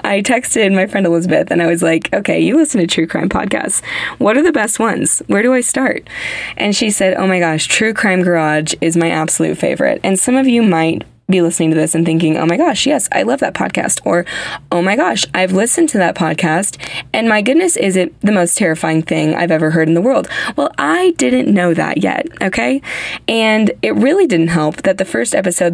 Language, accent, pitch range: English, American, 165-210 Hz